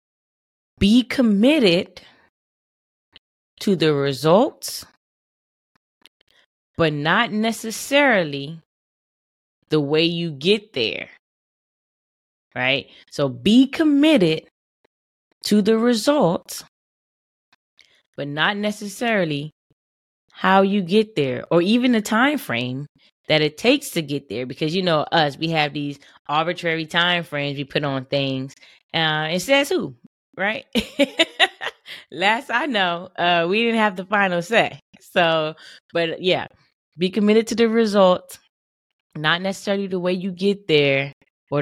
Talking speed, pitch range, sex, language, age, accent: 120 wpm, 150-220 Hz, female, English, 20-39, American